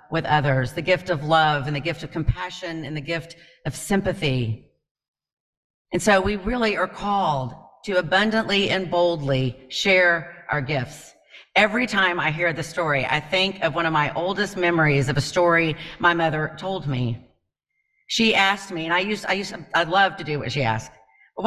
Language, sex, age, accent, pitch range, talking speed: English, female, 40-59, American, 150-200 Hz, 185 wpm